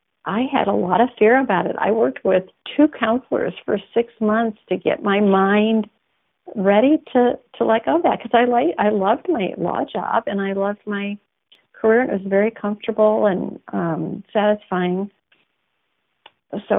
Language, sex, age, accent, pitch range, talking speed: English, female, 50-69, American, 180-220 Hz, 170 wpm